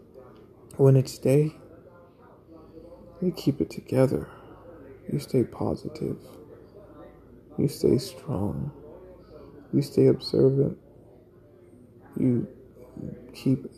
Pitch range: 125-160 Hz